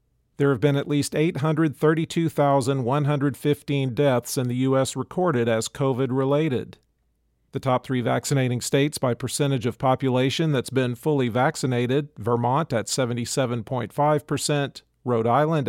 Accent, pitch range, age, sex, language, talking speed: American, 125-150 Hz, 40-59, male, English, 120 wpm